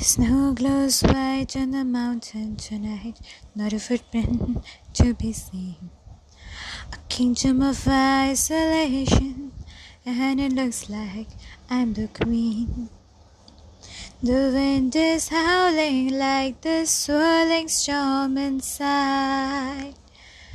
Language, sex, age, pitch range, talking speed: Bengali, female, 20-39, 235-370 Hz, 95 wpm